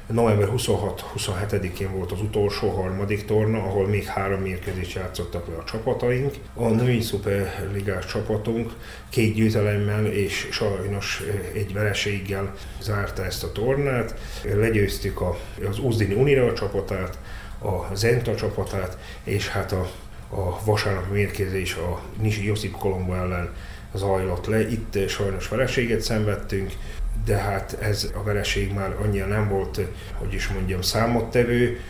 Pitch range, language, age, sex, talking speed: 95-110 Hz, Hungarian, 30-49, male, 125 wpm